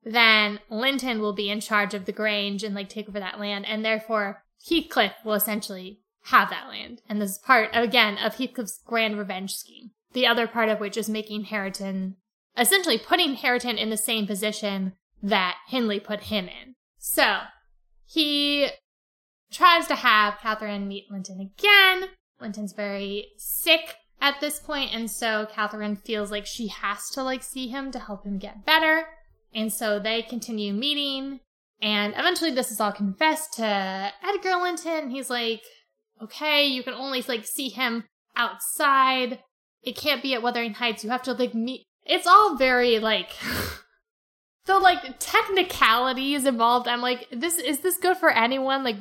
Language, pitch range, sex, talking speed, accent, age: English, 210-270 Hz, female, 165 wpm, American, 10-29